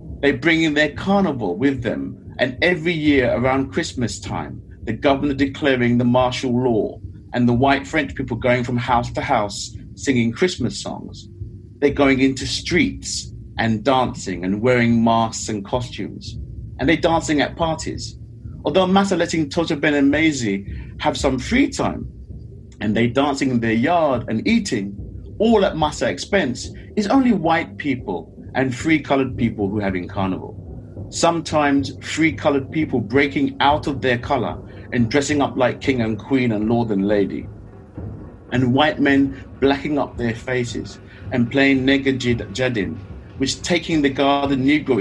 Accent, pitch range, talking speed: British, 110-140 Hz, 160 wpm